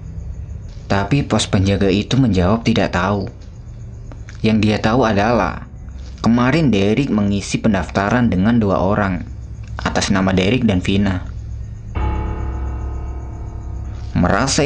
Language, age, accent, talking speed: Indonesian, 20-39, native, 100 wpm